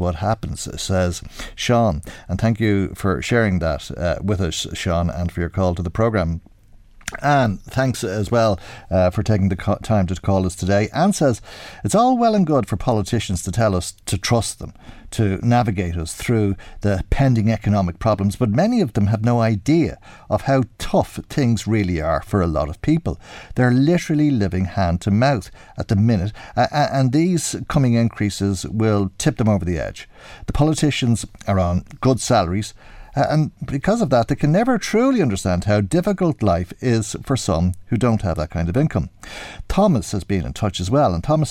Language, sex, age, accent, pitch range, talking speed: English, male, 50-69, Irish, 95-125 Hz, 190 wpm